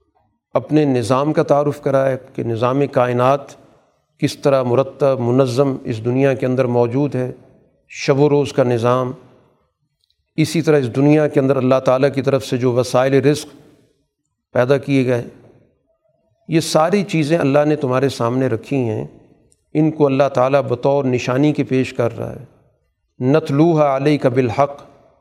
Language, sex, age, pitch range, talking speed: Urdu, male, 50-69, 130-160 Hz, 150 wpm